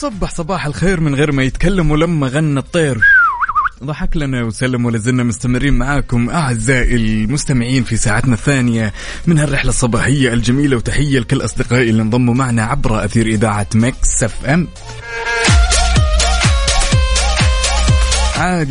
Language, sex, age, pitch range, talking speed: Arabic, male, 20-39, 110-135 Hz, 120 wpm